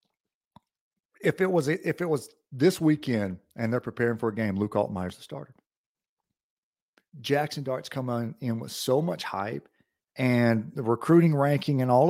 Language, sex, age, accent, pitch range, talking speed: English, male, 40-59, American, 110-140 Hz, 165 wpm